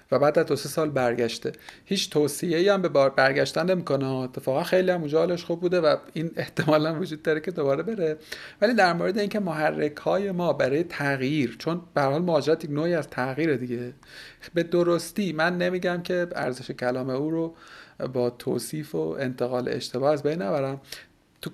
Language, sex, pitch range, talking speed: Persian, male, 130-175 Hz, 170 wpm